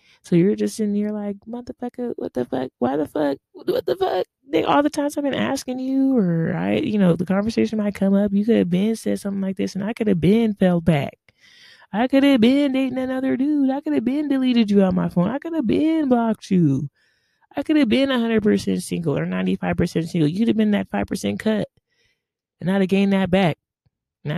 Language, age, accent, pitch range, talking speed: English, 20-39, American, 155-215 Hz, 225 wpm